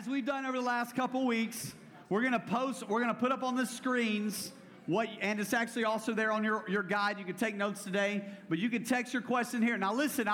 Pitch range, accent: 200-235 Hz, American